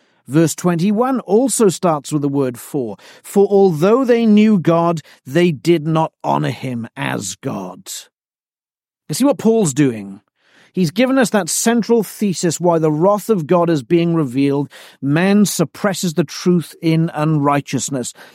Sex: male